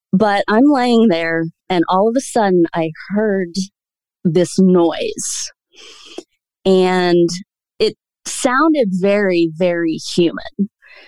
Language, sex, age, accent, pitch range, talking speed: English, female, 30-49, American, 170-215 Hz, 105 wpm